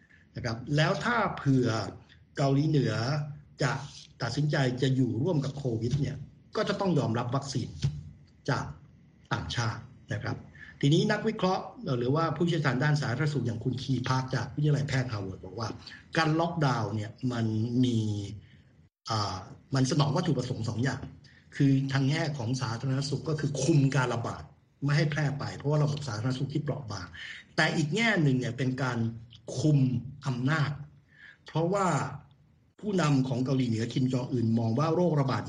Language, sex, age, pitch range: Thai, male, 60-79, 115-145 Hz